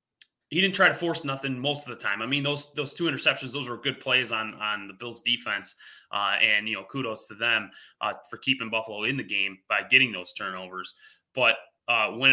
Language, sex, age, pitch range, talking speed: English, male, 20-39, 120-165 Hz, 225 wpm